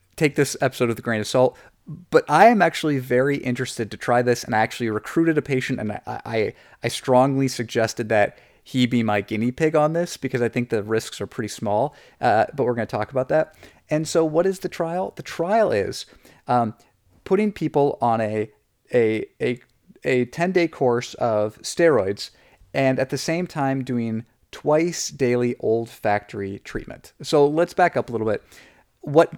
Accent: American